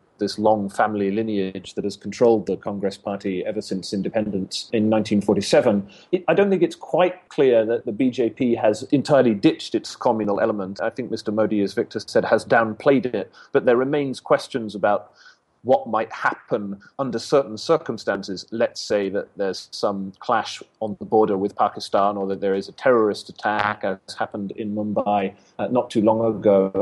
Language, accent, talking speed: English, British, 175 wpm